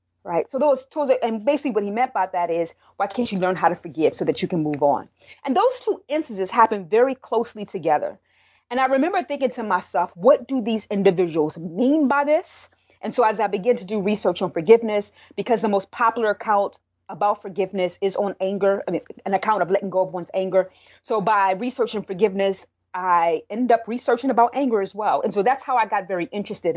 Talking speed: 215 wpm